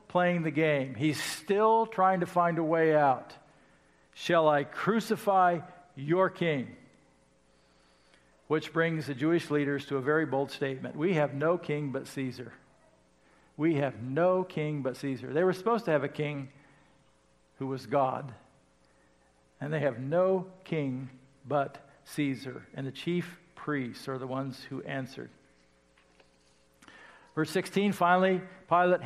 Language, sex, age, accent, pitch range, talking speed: English, male, 50-69, American, 130-170 Hz, 140 wpm